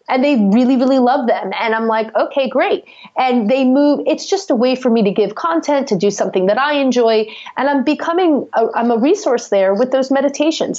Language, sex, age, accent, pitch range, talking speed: English, female, 30-49, American, 210-285 Hz, 215 wpm